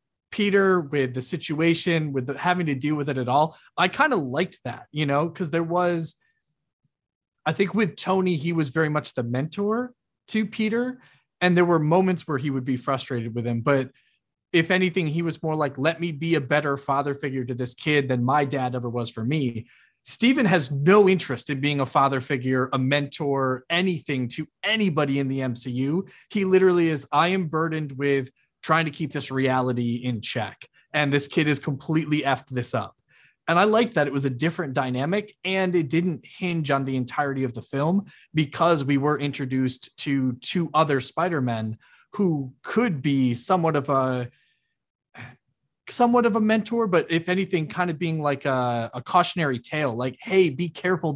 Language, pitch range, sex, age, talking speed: English, 135-175 Hz, male, 30-49, 190 wpm